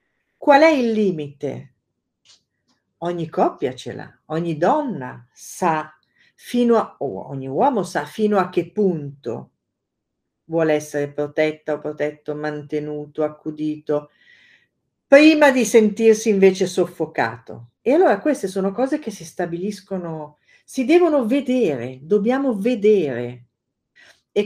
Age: 50-69